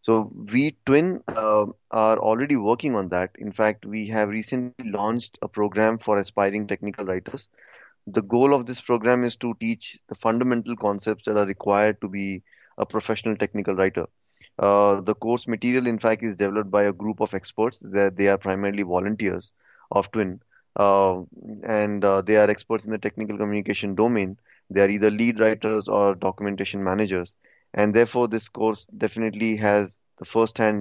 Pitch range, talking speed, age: 100-115 Hz, 170 wpm, 20-39